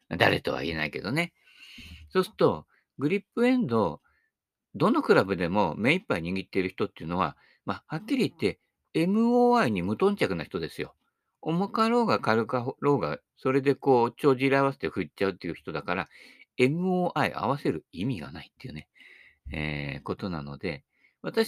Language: Japanese